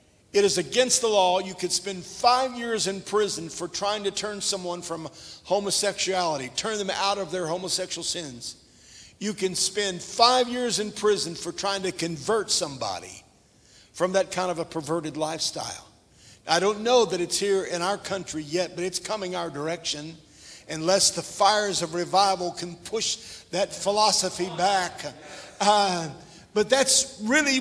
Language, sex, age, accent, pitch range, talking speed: English, male, 50-69, American, 180-245 Hz, 160 wpm